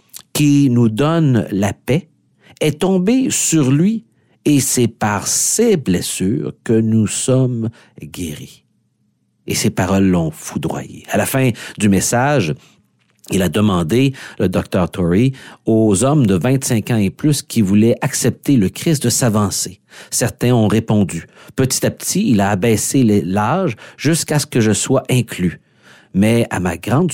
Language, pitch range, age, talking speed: French, 105-135 Hz, 50-69, 155 wpm